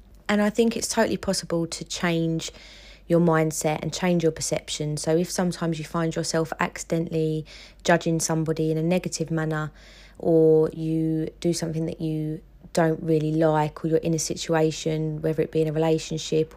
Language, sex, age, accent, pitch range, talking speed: English, female, 20-39, British, 155-170 Hz, 170 wpm